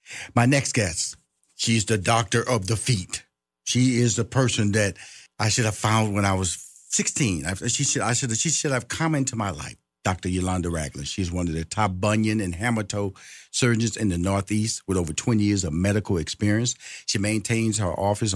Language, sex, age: English, male, 50-69